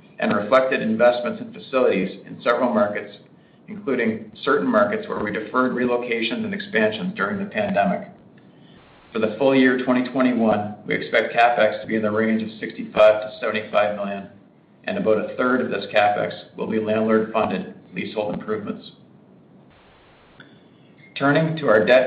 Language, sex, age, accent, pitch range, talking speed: English, male, 50-69, American, 110-130 Hz, 150 wpm